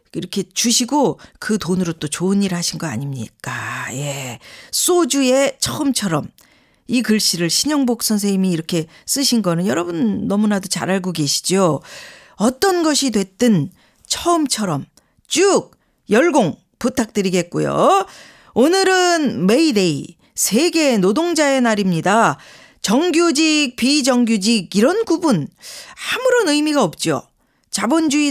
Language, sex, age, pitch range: Korean, female, 40-59, 190-300 Hz